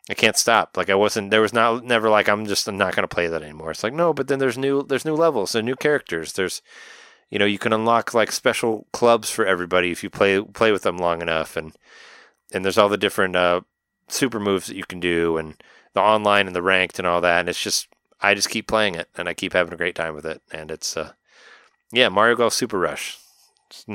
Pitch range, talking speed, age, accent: 85-115 Hz, 250 wpm, 30-49, American